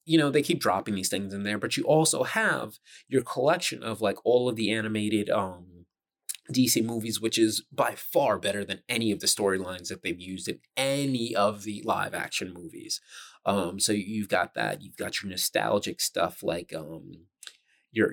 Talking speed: 190 wpm